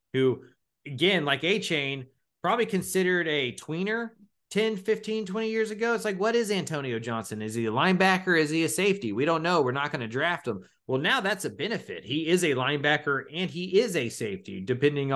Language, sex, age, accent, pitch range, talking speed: English, male, 30-49, American, 115-180 Hz, 205 wpm